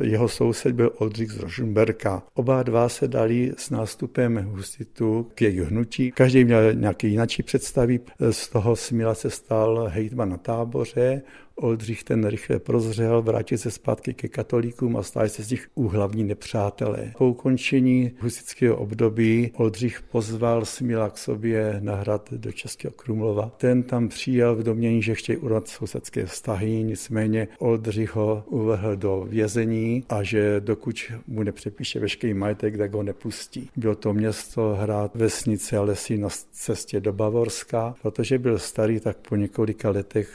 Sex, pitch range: male, 110-120 Hz